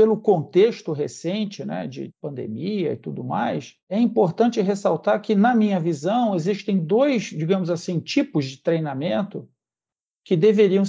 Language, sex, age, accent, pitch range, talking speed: Portuguese, male, 50-69, Brazilian, 165-230 Hz, 140 wpm